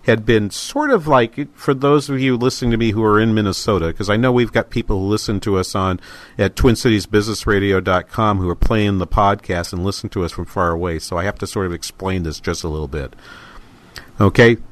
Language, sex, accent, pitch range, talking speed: English, male, American, 95-120 Hz, 220 wpm